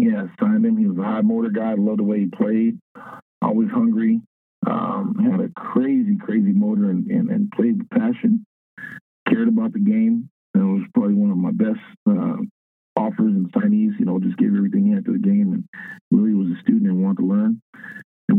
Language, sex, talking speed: English, male, 210 wpm